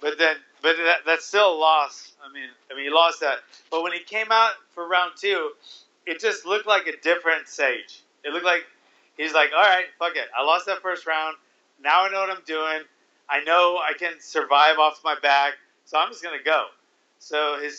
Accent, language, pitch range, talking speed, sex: American, English, 165-215 Hz, 215 wpm, male